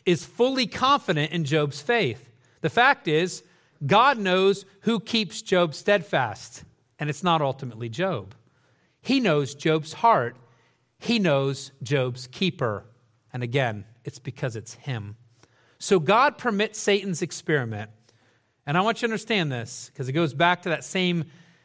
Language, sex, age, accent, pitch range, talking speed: English, male, 40-59, American, 125-185 Hz, 145 wpm